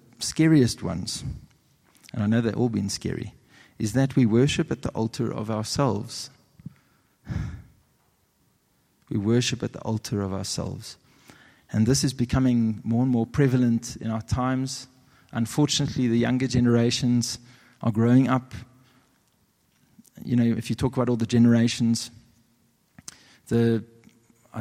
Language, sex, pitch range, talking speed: English, male, 110-130 Hz, 130 wpm